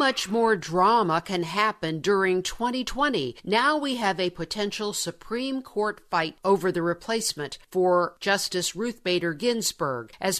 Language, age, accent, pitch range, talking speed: English, 50-69, American, 170-215 Hz, 140 wpm